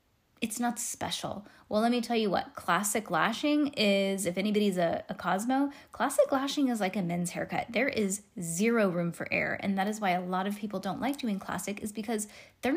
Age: 10-29